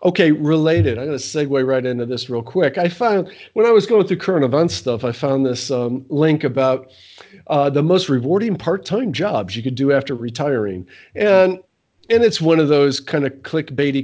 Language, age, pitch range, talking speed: English, 40-59, 125-155 Hz, 195 wpm